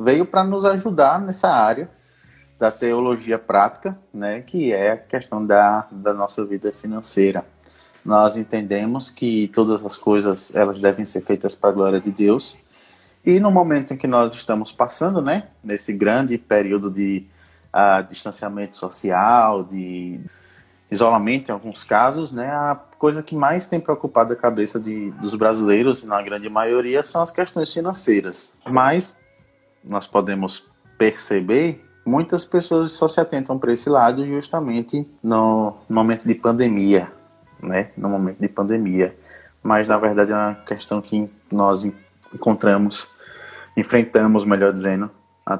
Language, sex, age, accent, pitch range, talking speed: Portuguese, male, 20-39, Brazilian, 100-125 Hz, 145 wpm